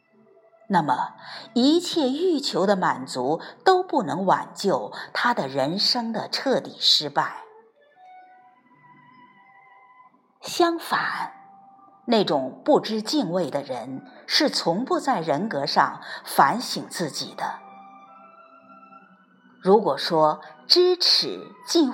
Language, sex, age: Chinese, female, 50-69